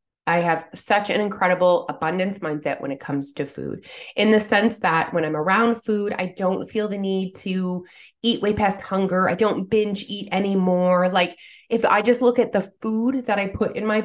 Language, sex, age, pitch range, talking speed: English, female, 20-39, 190-245 Hz, 205 wpm